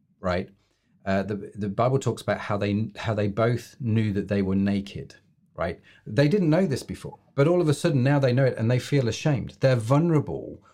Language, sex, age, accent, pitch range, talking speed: English, male, 40-59, British, 105-140 Hz, 210 wpm